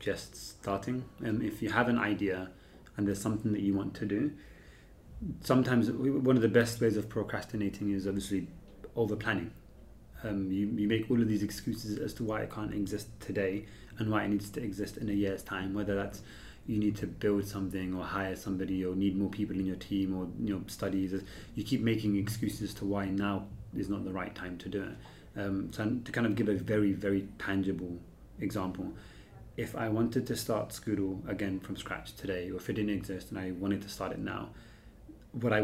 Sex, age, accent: male, 30-49, British